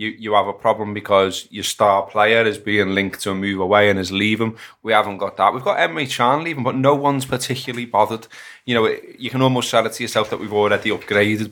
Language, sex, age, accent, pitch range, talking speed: English, male, 20-39, British, 100-120 Hz, 235 wpm